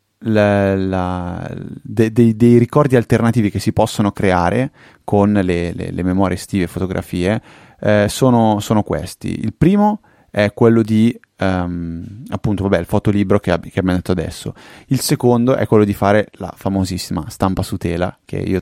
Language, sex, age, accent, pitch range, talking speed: Italian, male, 20-39, native, 90-105 Hz, 160 wpm